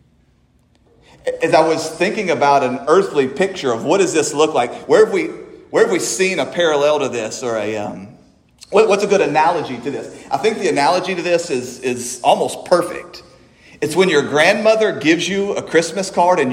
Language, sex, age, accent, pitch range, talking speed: English, male, 40-59, American, 140-180 Hz, 200 wpm